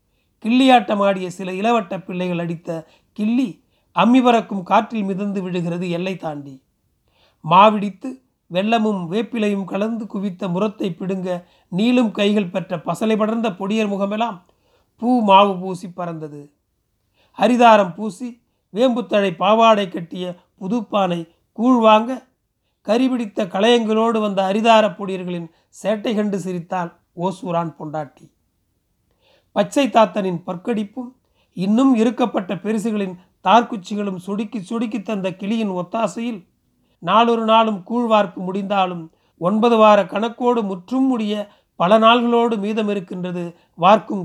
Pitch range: 180-225 Hz